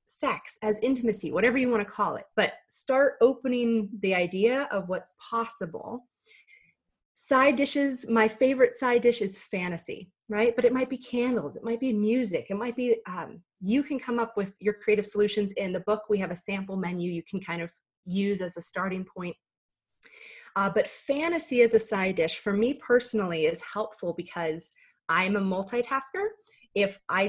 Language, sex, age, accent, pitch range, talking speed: English, female, 30-49, American, 195-260 Hz, 180 wpm